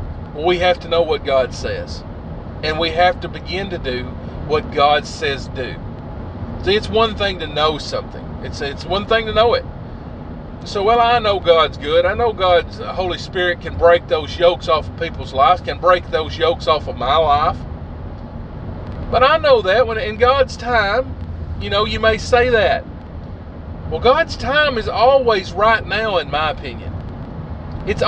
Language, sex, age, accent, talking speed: English, male, 40-59, American, 180 wpm